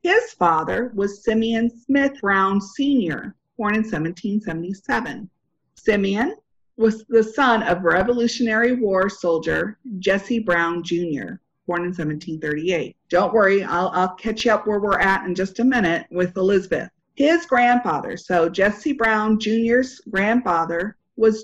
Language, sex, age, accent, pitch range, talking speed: English, female, 50-69, American, 180-235 Hz, 135 wpm